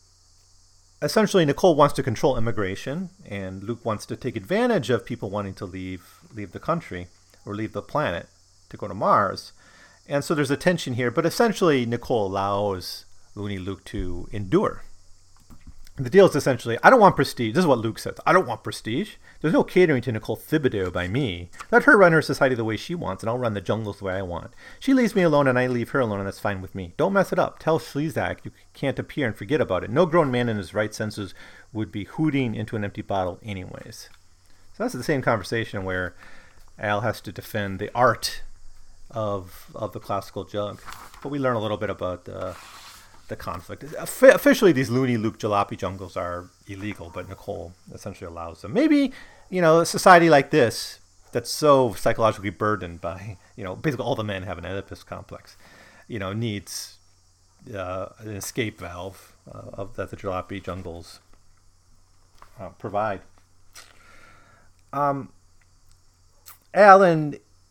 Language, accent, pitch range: English, American, 95-130 Hz